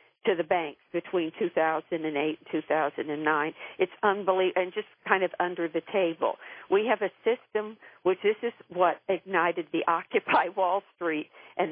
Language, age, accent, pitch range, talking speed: English, 50-69, American, 165-205 Hz, 155 wpm